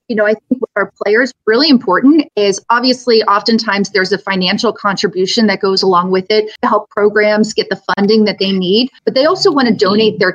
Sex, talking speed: female, 215 wpm